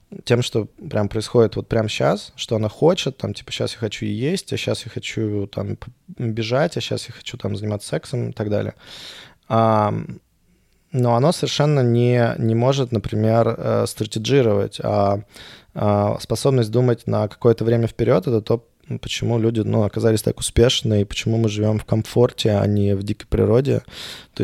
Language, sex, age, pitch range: Russian, male, 20-39, 105-120 Hz